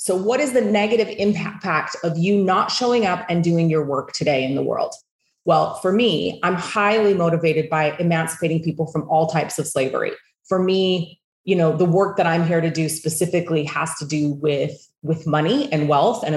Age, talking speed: 30-49, 200 wpm